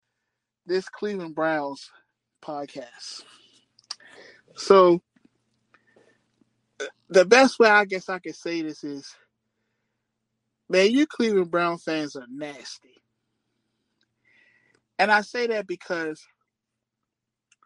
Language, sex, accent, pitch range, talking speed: English, male, American, 145-200 Hz, 90 wpm